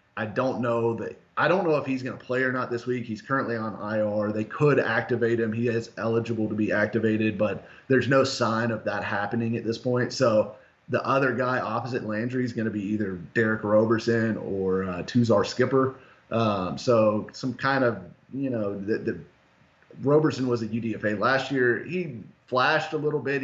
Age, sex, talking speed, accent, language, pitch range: 30-49, male, 195 wpm, American, English, 105-130 Hz